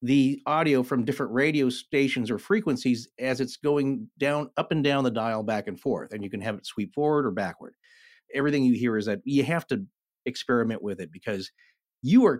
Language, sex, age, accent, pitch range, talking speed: English, male, 40-59, American, 120-155 Hz, 210 wpm